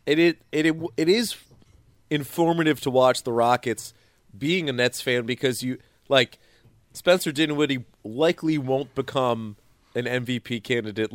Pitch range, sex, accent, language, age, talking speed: 120-150 Hz, male, American, English, 30-49, 135 wpm